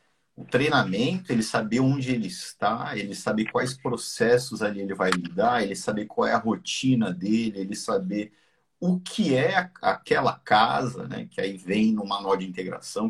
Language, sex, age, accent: Portuguese, male, 50-69, Brazilian